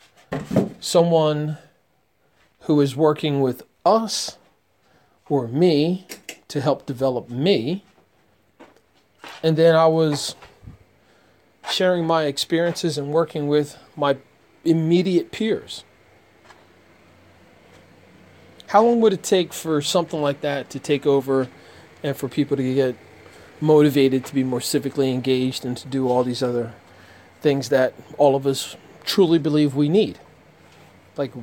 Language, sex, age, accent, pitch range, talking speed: English, male, 40-59, American, 135-160 Hz, 120 wpm